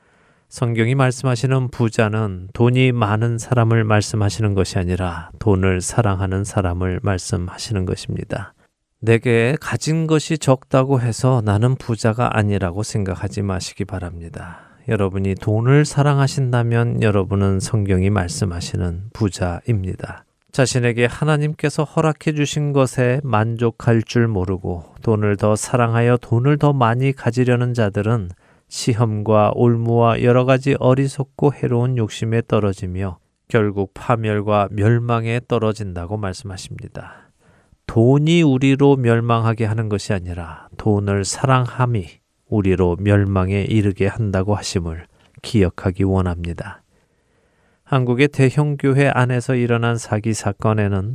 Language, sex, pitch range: Korean, male, 100-125 Hz